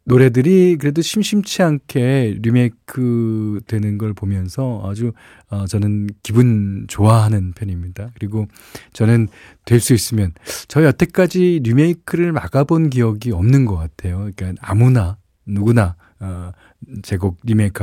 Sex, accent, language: male, native, Korean